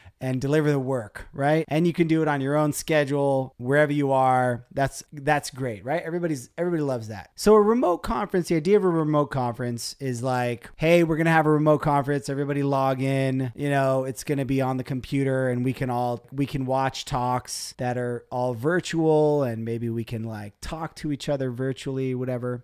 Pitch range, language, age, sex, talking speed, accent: 120-150 Hz, English, 30-49, male, 205 wpm, American